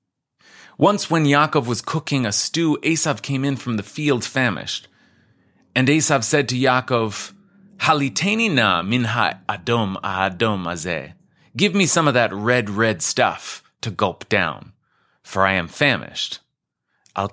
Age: 30-49